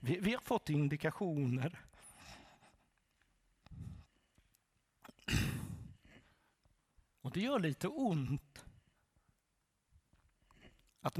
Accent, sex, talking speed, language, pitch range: native, male, 60 wpm, Swedish, 130-170 Hz